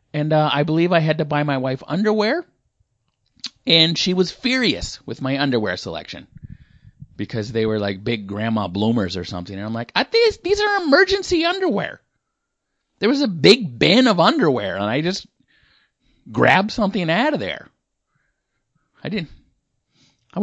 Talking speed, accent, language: 160 wpm, American, English